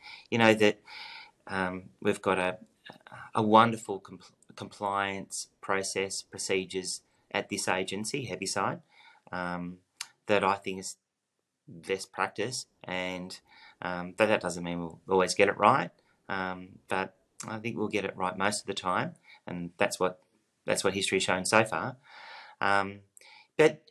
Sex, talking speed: male, 145 wpm